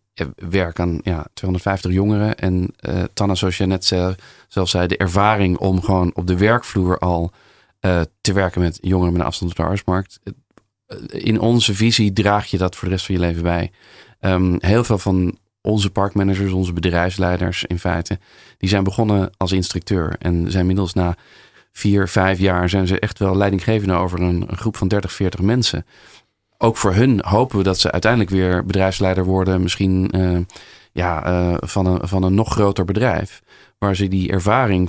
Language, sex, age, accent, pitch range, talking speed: Dutch, male, 40-59, Dutch, 90-105 Hz, 180 wpm